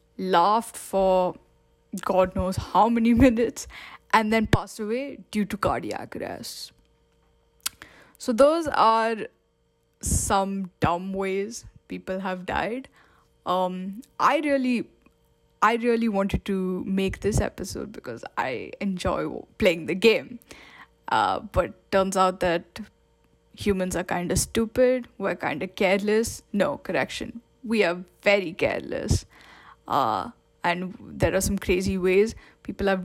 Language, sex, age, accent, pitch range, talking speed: English, female, 10-29, Indian, 185-230 Hz, 125 wpm